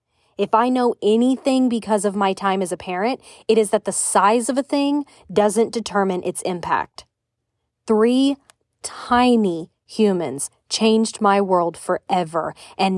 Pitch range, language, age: 180-230 Hz, English, 20-39